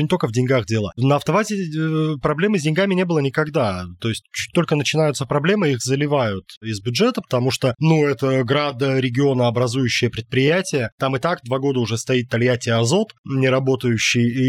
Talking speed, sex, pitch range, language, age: 160 wpm, male, 125-155 Hz, Russian, 20-39